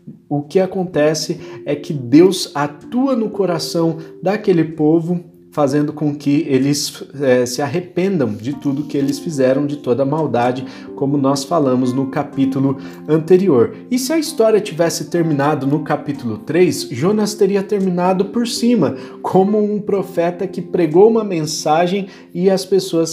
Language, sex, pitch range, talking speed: Portuguese, male, 140-185 Hz, 145 wpm